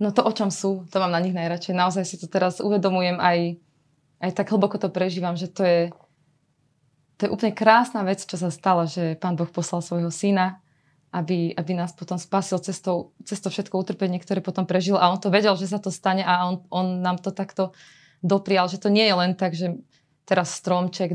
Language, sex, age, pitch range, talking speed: Slovak, female, 20-39, 170-190 Hz, 215 wpm